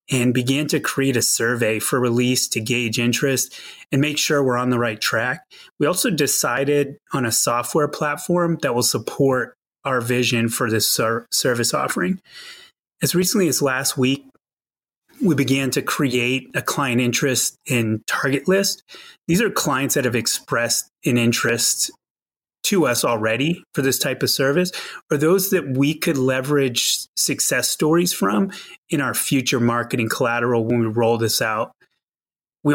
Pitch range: 125-165 Hz